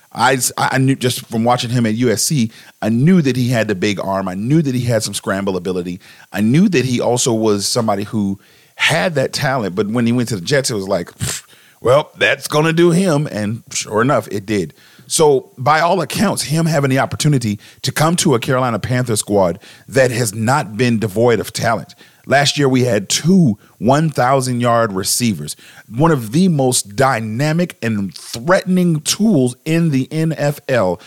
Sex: male